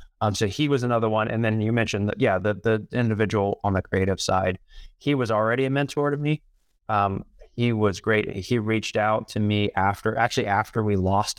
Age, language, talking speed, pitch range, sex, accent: 20-39, English, 210 wpm, 100-115 Hz, male, American